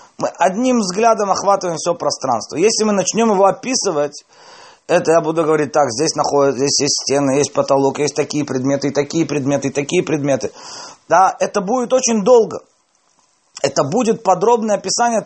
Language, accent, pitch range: Russian, native, 135-200 Hz